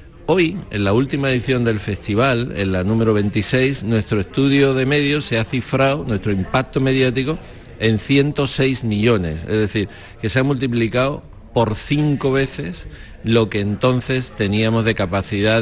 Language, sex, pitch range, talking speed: Spanish, male, 105-125 Hz, 150 wpm